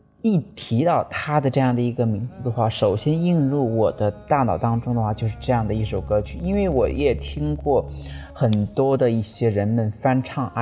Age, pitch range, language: 20-39, 110-140 Hz, Chinese